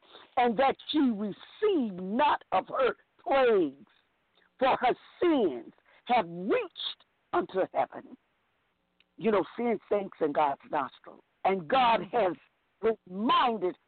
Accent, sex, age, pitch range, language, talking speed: American, female, 50-69, 210-330 Hz, English, 110 wpm